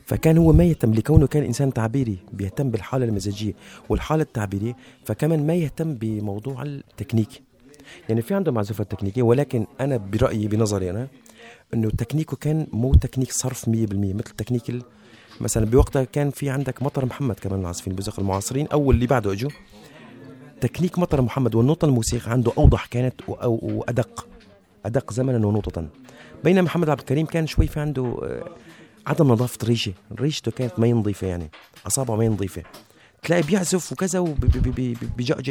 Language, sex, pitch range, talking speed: Arabic, male, 110-150 Hz, 145 wpm